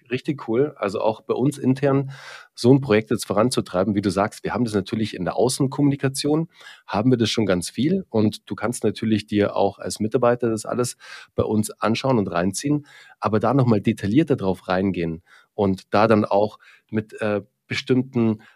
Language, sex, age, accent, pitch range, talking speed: German, male, 40-59, German, 105-135 Hz, 180 wpm